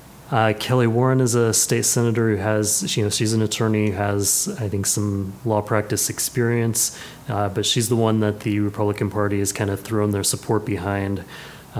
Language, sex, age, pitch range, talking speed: English, male, 30-49, 100-115 Hz, 200 wpm